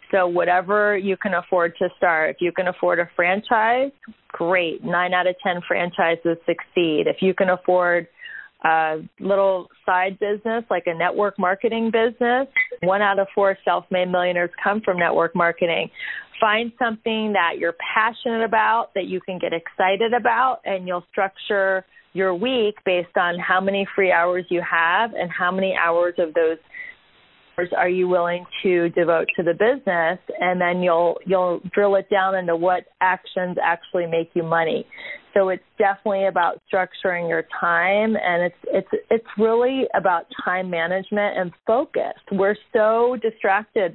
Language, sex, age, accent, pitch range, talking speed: English, female, 30-49, American, 175-205 Hz, 160 wpm